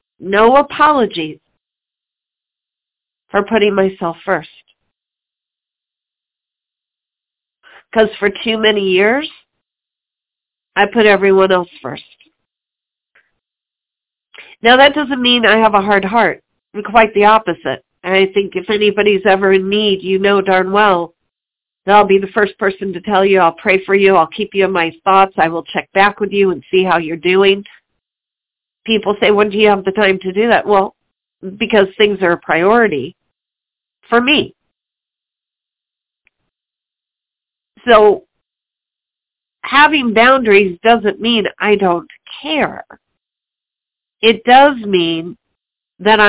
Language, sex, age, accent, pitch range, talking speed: English, female, 50-69, American, 190-225 Hz, 130 wpm